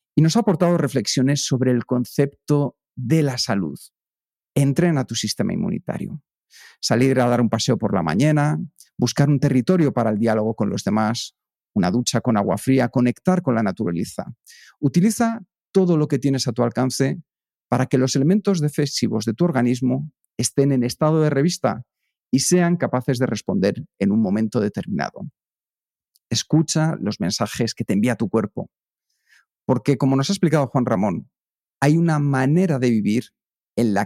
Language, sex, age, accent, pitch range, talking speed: Spanish, male, 40-59, Spanish, 120-155 Hz, 165 wpm